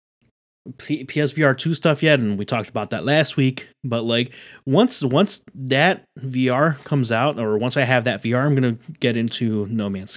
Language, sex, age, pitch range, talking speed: English, male, 30-49, 110-145 Hz, 175 wpm